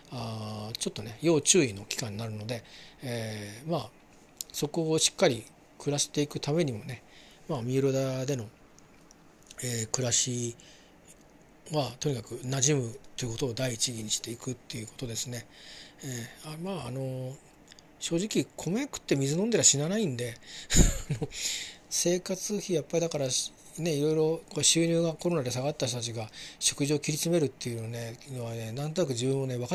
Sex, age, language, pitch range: male, 40-59, Japanese, 120-150 Hz